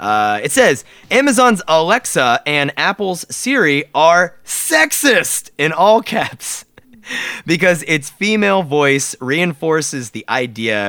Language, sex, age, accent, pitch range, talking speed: English, male, 30-49, American, 125-190 Hz, 110 wpm